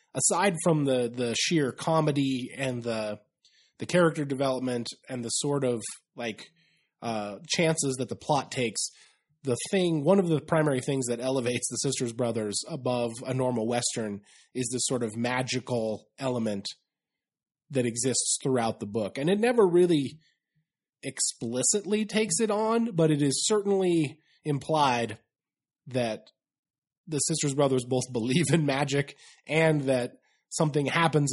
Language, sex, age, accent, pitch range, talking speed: English, male, 20-39, American, 115-150 Hz, 140 wpm